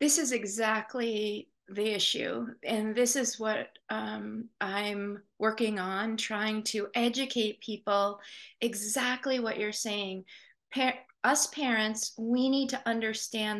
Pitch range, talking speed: 210-250 Hz, 125 wpm